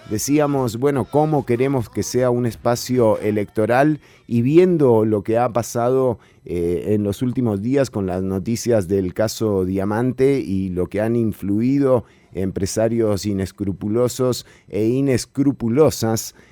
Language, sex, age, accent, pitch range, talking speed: Spanish, male, 30-49, Argentinian, 95-130 Hz, 125 wpm